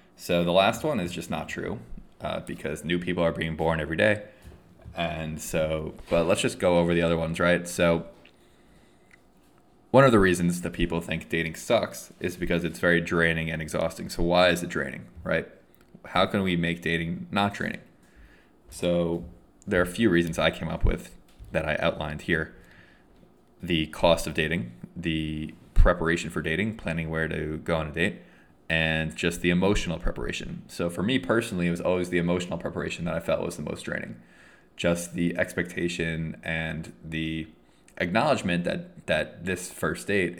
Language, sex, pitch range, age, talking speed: English, male, 80-90 Hz, 20-39, 180 wpm